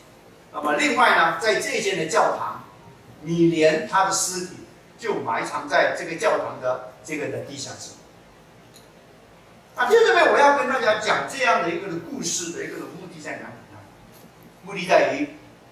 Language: Chinese